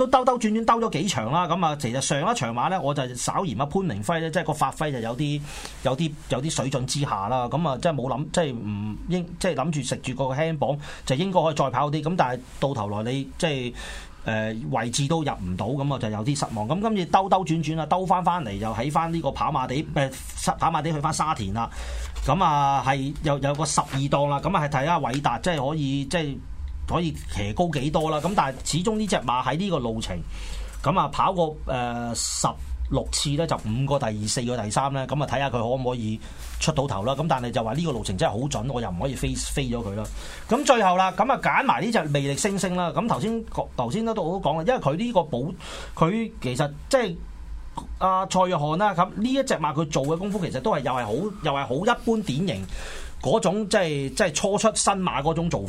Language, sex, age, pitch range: Chinese, male, 30-49, 125-175 Hz